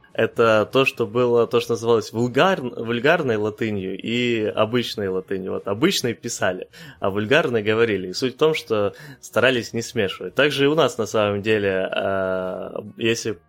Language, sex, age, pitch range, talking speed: Ukrainian, male, 20-39, 100-125 Hz, 150 wpm